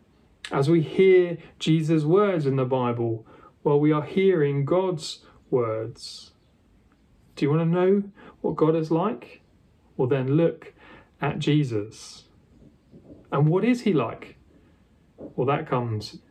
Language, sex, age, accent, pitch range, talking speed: English, male, 30-49, British, 125-175 Hz, 135 wpm